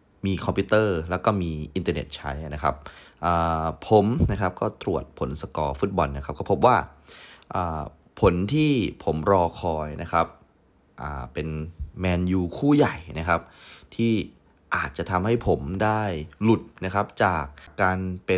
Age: 30-49